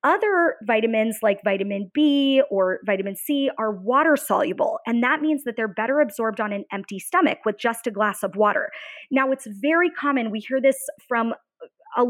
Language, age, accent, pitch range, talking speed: English, 20-39, American, 225-295 Hz, 180 wpm